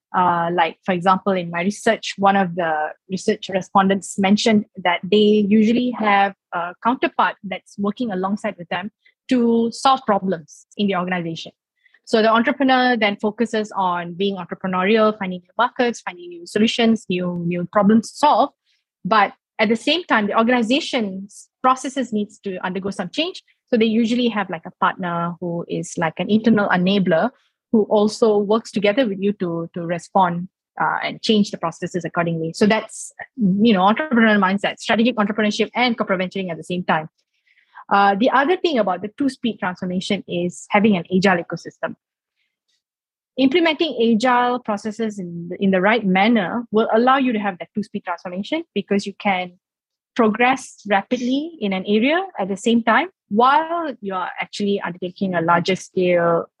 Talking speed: 165 wpm